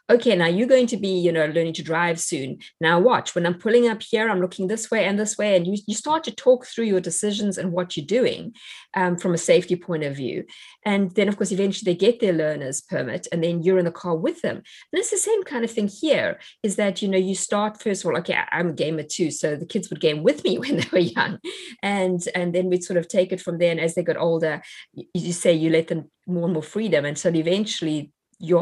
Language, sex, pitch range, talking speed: English, female, 165-205 Hz, 265 wpm